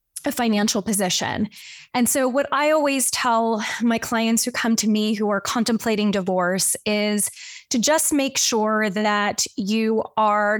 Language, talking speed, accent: English, 145 wpm, American